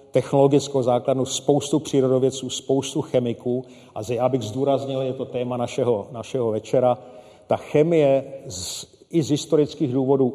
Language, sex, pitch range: Czech, male, 125-140 Hz